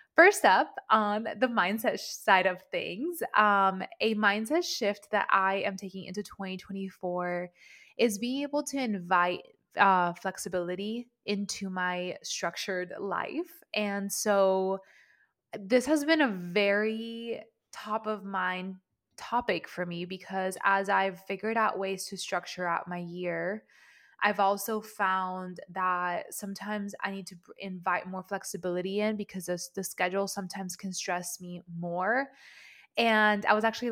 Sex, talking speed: female, 140 wpm